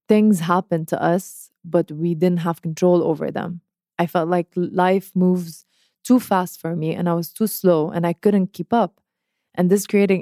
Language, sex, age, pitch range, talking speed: Arabic, female, 20-39, 175-205 Hz, 195 wpm